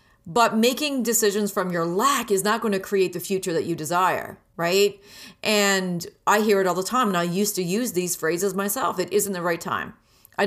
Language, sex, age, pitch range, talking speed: English, female, 30-49, 180-215 Hz, 220 wpm